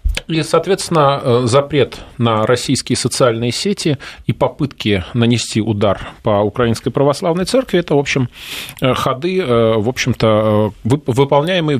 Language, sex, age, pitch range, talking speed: Russian, male, 30-49, 110-135 Hz, 110 wpm